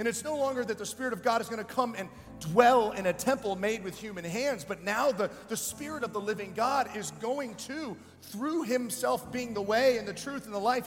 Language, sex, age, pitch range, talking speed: English, male, 40-59, 210-270 Hz, 245 wpm